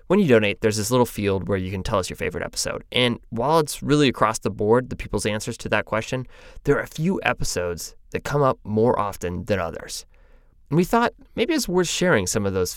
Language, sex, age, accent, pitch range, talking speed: English, male, 20-39, American, 100-130 Hz, 235 wpm